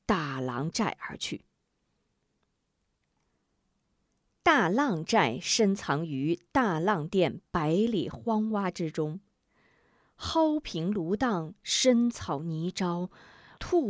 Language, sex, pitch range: Chinese, female, 160-225 Hz